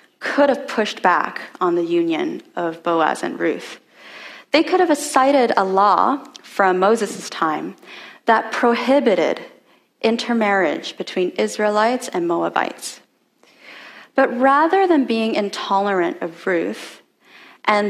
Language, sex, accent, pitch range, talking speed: English, female, American, 180-250 Hz, 115 wpm